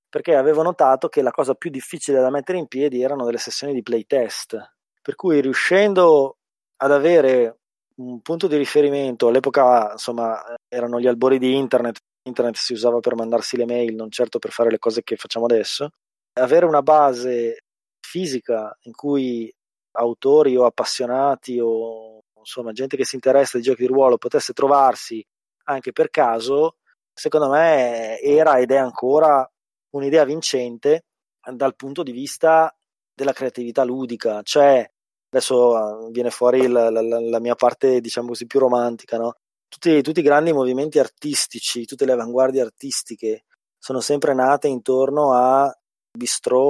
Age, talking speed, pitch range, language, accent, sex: 20-39, 150 wpm, 120-145 Hz, Italian, native, male